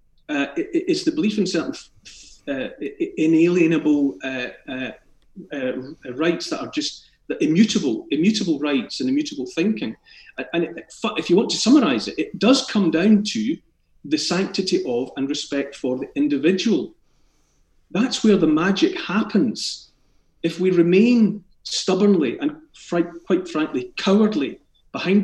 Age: 40-59